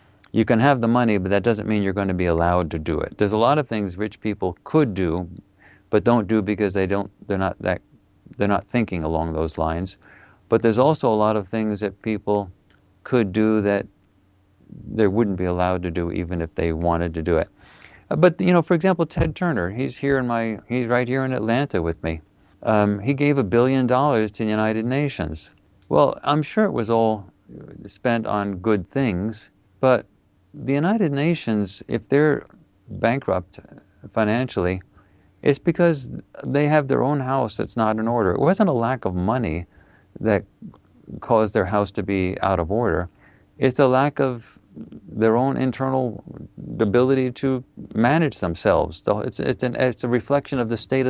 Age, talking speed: 50-69, 180 wpm